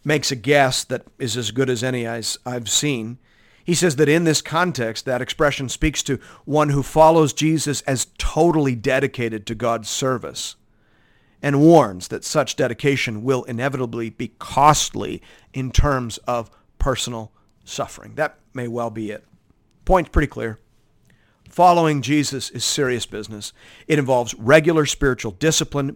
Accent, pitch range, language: American, 110-140 Hz, English